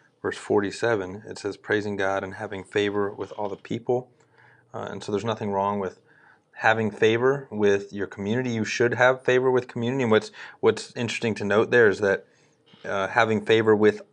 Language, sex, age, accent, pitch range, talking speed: English, male, 30-49, American, 95-115 Hz, 185 wpm